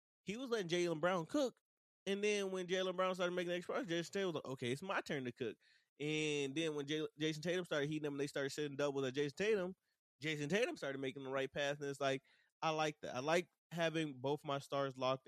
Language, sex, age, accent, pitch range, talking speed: English, male, 20-39, American, 130-155 Hz, 240 wpm